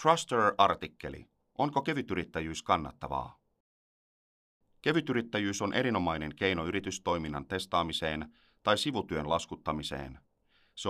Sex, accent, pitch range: male, native, 80-100 Hz